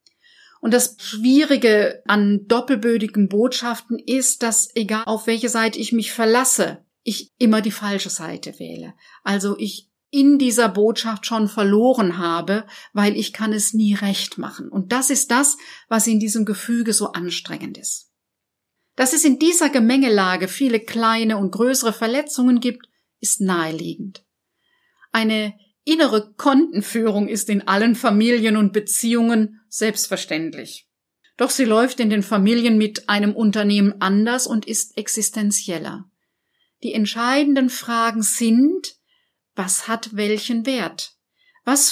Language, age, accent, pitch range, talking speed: German, 50-69, German, 205-245 Hz, 130 wpm